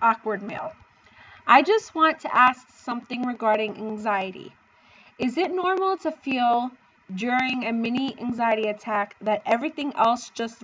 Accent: American